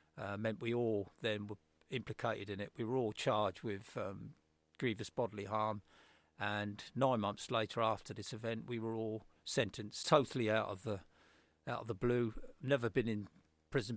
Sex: male